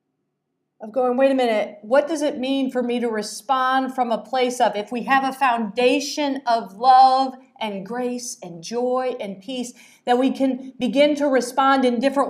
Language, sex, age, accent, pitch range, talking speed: English, female, 40-59, American, 200-260 Hz, 185 wpm